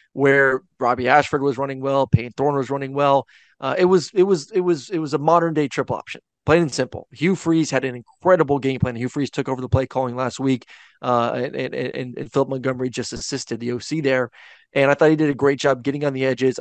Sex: male